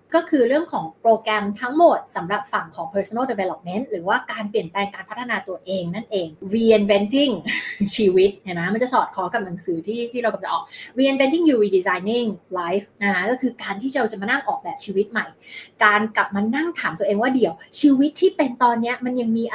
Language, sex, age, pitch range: Thai, female, 20-39, 195-245 Hz